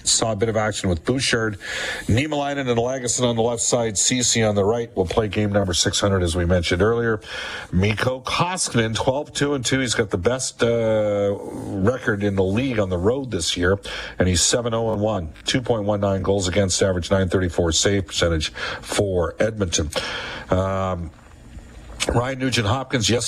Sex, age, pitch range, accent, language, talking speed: male, 50-69, 95-115 Hz, American, English, 170 wpm